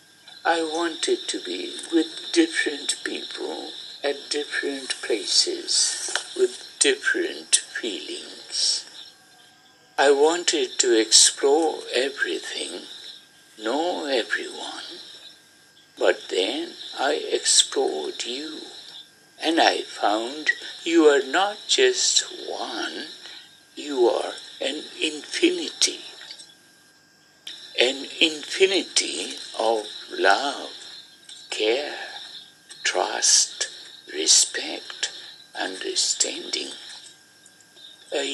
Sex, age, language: male, 60-79, English